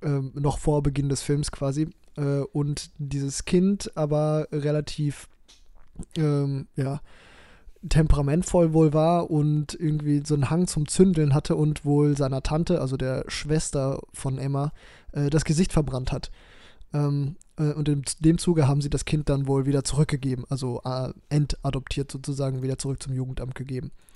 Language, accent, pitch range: German, German, 135-155 Hz